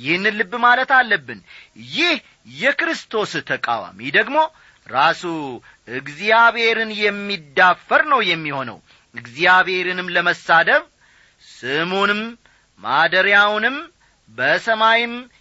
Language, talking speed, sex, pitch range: Amharic, 70 wpm, male, 155-225 Hz